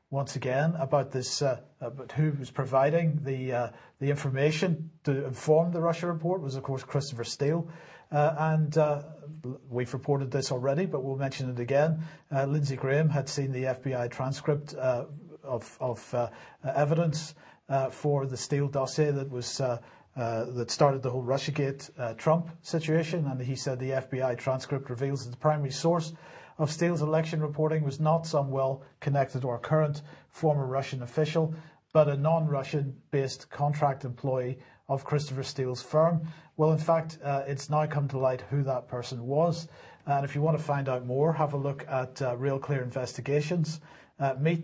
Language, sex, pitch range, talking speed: English, male, 135-155 Hz, 175 wpm